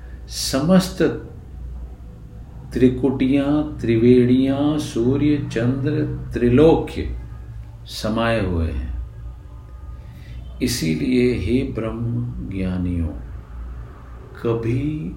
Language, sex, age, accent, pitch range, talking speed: Hindi, male, 50-69, native, 75-120 Hz, 55 wpm